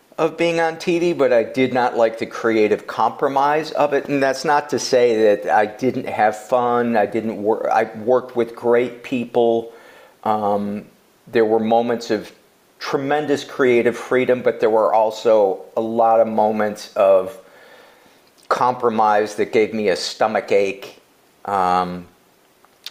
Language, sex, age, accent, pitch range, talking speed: English, male, 50-69, American, 105-130 Hz, 150 wpm